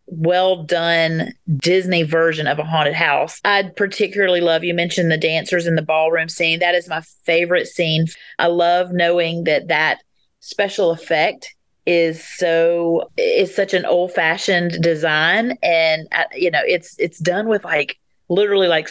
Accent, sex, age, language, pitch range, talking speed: American, female, 40-59, English, 165-200 Hz, 155 wpm